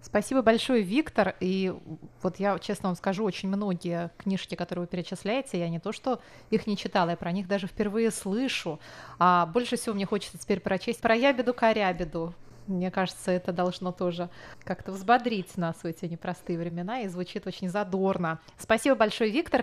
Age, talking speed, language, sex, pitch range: 20-39, 170 wpm, Russian, female, 180-225 Hz